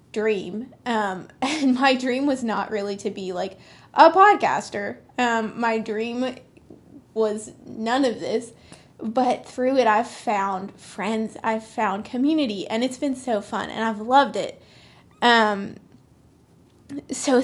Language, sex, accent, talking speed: English, female, American, 140 wpm